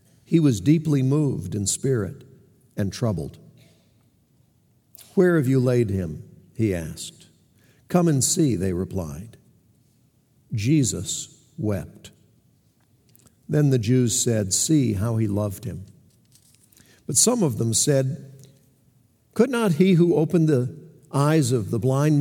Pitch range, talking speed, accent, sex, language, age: 115-150 Hz, 125 wpm, American, male, English, 60-79